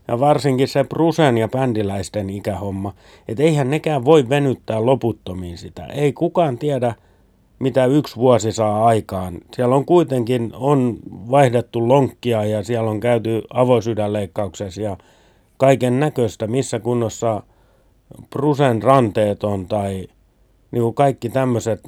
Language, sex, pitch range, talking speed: Finnish, male, 100-130 Hz, 125 wpm